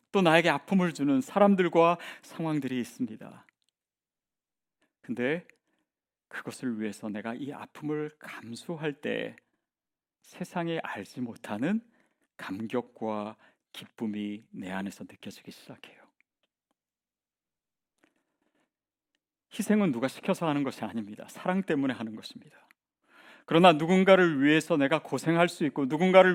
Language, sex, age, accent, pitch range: Korean, male, 40-59, native, 120-195 Hz